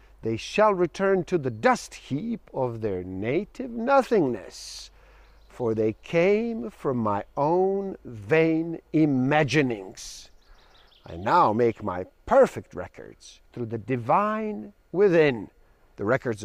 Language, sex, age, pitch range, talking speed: English, male, 50-69, 120-200 Hz, 110 wpm